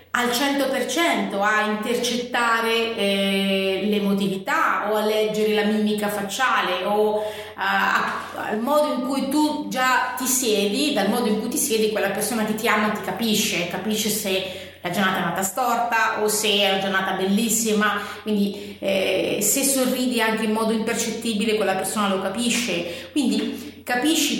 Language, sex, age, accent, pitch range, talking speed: Italian, female, 30-49, native, 205-245 Hz, 150 wpm